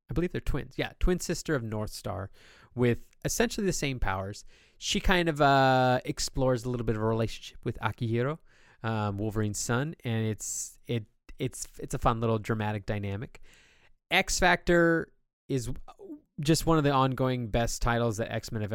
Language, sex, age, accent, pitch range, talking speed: English, male, 20-39, American, 105-130 Hz, 175 wpm